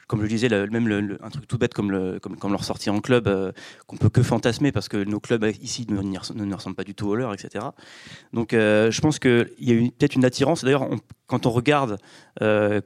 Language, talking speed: French, 250 wpm